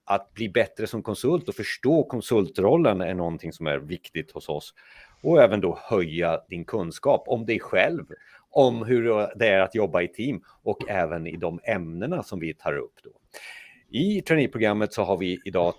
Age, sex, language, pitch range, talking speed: 30-49, male, Swedish, 85-140 Hz, 180 wpm